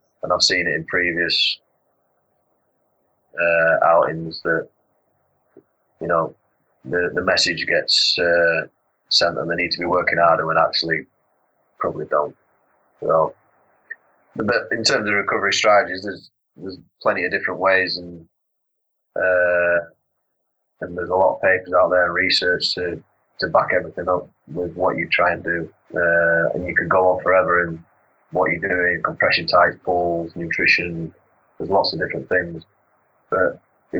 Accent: British